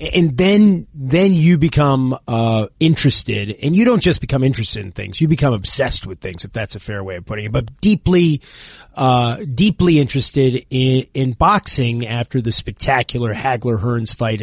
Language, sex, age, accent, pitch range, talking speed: English, male, 30-49, American, 115-150 Hz, 170 wpm